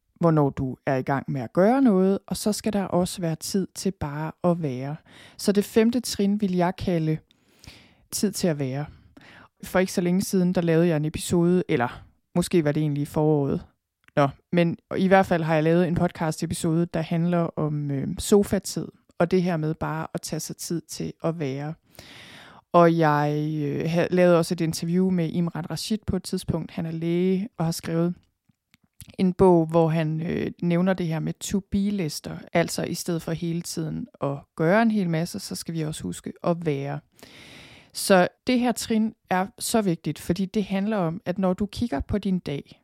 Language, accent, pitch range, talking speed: Danish, native, 160-195 Hz, 195 wpm